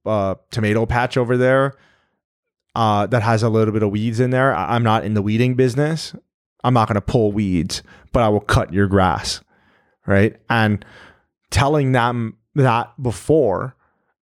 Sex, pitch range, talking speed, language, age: male, 105-130 Hz, 165 wpm, English, 30-49